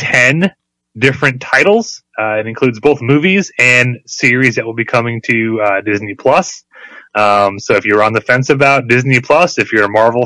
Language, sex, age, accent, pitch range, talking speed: English, male, 30-49, American, 110-145 Hz, 185 wpm